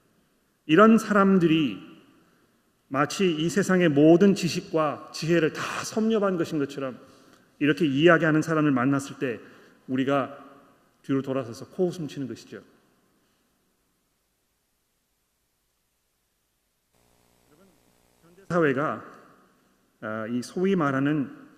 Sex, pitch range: male, 125-165 Hz